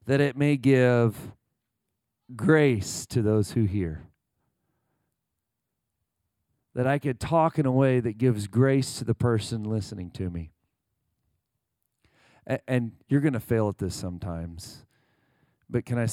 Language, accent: English, American